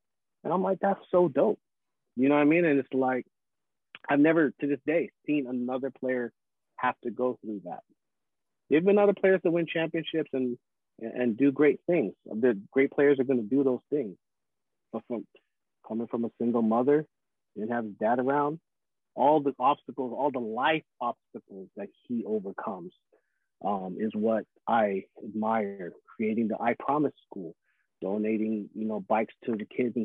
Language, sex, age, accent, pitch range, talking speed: English, male, 30-49, American, 115-155 Hz, 175 wpm